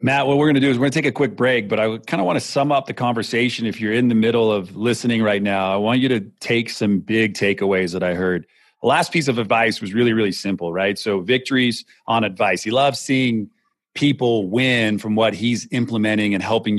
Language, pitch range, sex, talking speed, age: English, 105-125 Hz, male, 240 wpm, 30-49